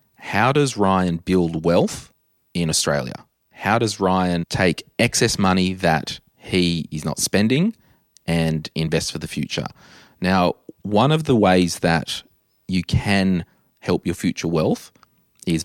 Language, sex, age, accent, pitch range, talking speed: English, male, 30-49, Australian, 85-110 Hz, 140 wpm